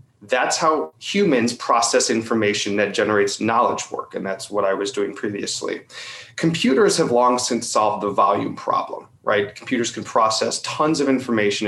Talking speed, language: 160 wpm, English